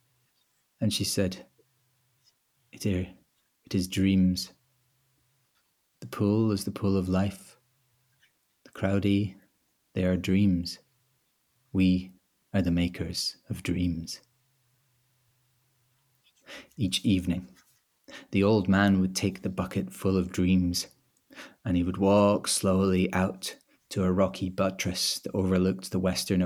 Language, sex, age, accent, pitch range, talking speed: English, male, 30-49, British, 95-110 Hz, 115 wpm